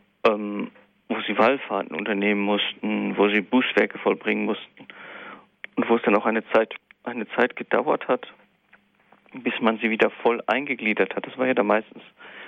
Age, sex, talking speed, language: 40-59, male, 160 wpm, German